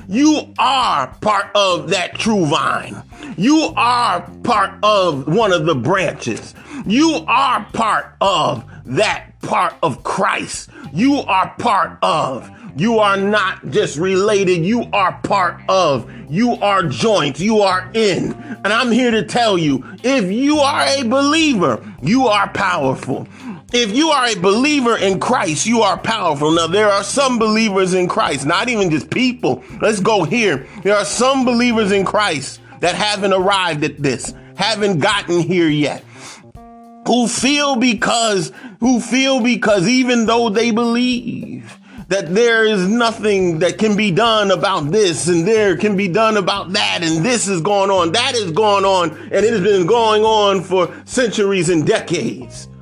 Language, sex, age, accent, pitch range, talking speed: English, male, 40-59, American, 185-235 Hz, 160 wpm